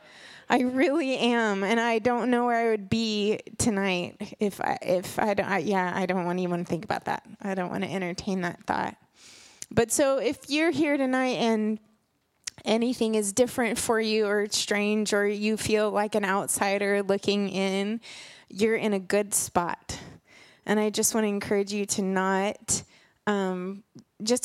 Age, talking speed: 20-39, 175 wpm